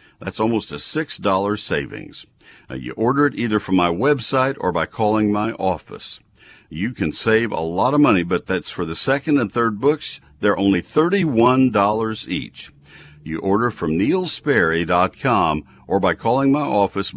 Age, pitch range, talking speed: 60-79, 90-130 Hz, 160 wpm